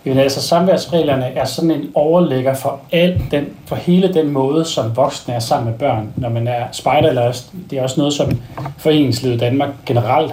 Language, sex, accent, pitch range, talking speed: Danish, male, native, 120-150 Hz, 185 wpm